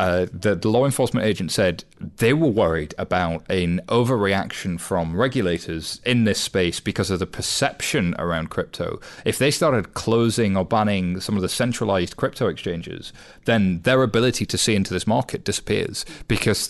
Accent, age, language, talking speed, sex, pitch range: British, 30-49, English, 165 wpm, male, 90-115 Hz